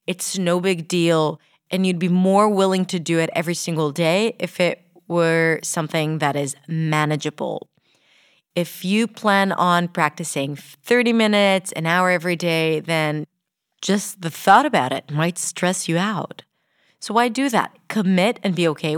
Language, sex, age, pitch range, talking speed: English, female, 30-49, 165-210 Hz, 160 wpm